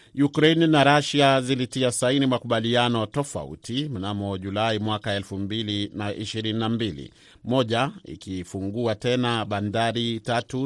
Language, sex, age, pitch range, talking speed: Swahili, male, 40-59, 105-130 Hz, 90 wpm